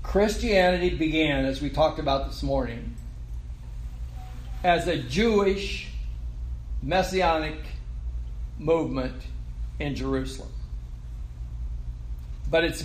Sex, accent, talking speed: male, American, 80 wpm